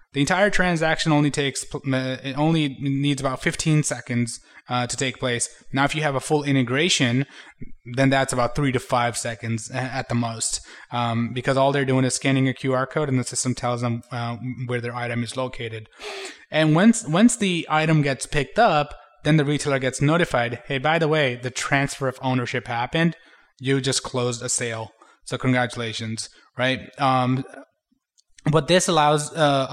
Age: 20-39